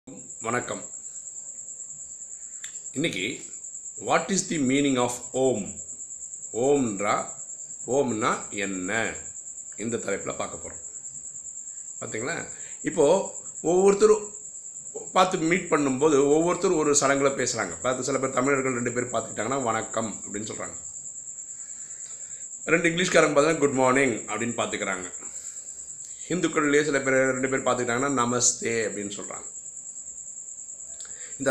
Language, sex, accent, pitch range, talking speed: Tamil, male, native, 110-150 Hz, 40 wpm